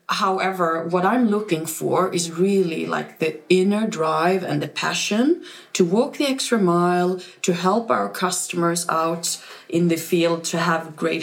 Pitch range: 170-220 Hz